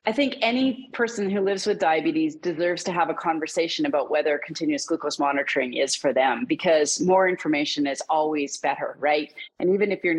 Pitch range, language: 150-185 Hz, English